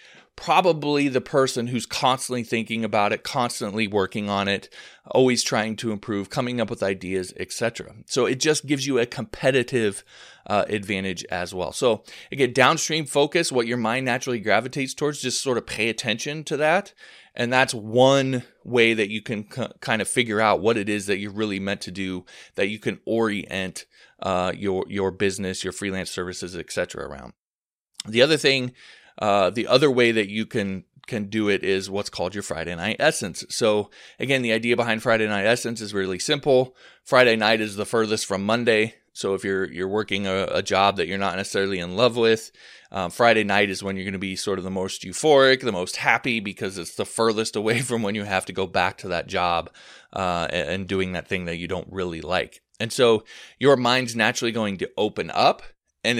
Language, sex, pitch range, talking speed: English, male, 95-125 Hz, 200 wpm